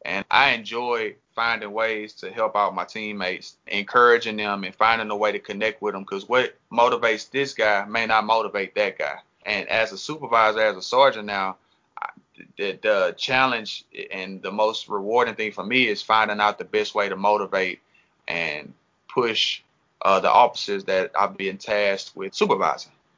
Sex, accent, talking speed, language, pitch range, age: male, American, 175 wpm, English, 105-115 Hz, 30-49